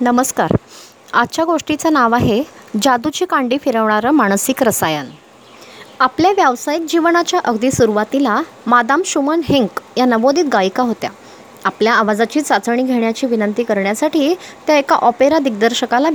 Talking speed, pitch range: 120 wpm, 235-315 Hz